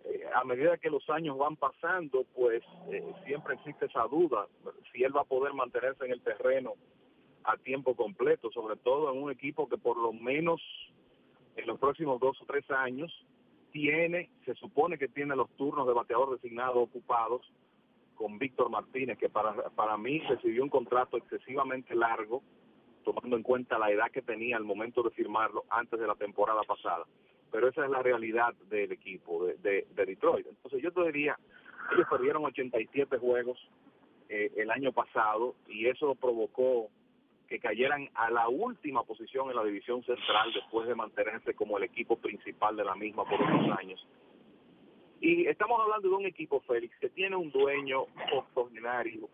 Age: 40-59